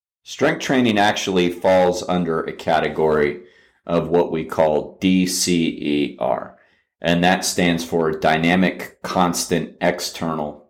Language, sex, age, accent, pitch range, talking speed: English, male, 30-49, American, 85-100 Hz, 105 wpm